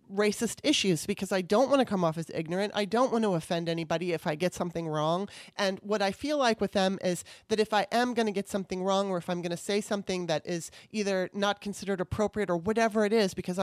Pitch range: 175-215 Hz